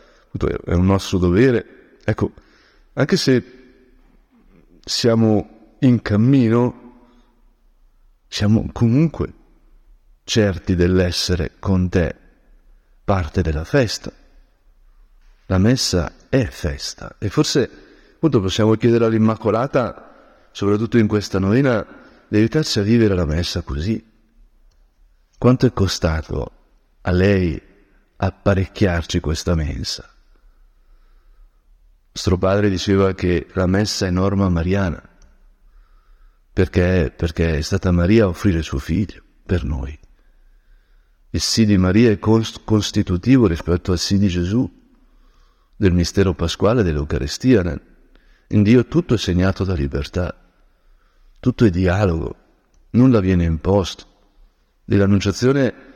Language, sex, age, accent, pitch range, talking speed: Italian, male, 50-69, native, 85-110 Hz, 105 wpm